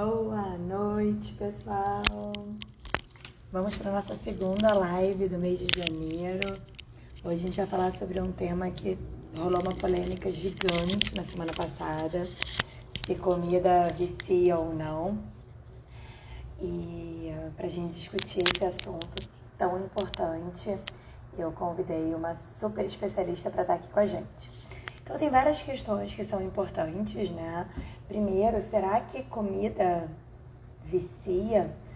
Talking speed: 130 wpm